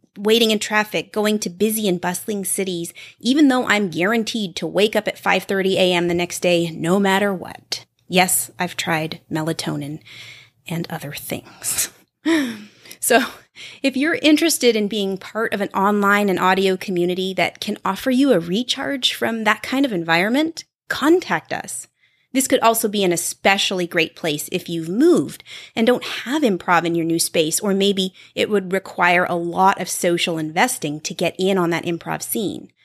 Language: English